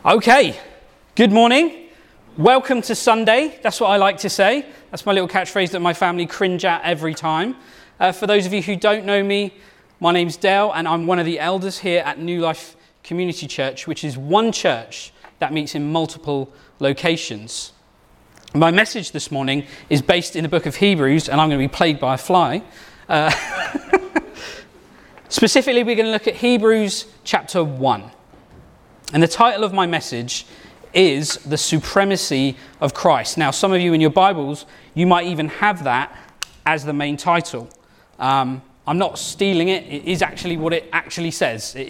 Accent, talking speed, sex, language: British, 180 wpm, male, English